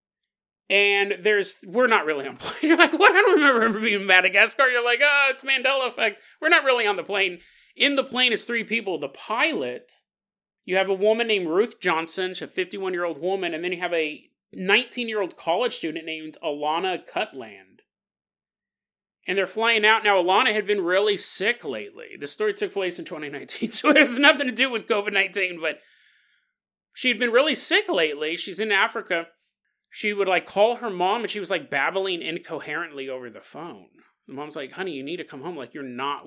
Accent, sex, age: American, male, 30-49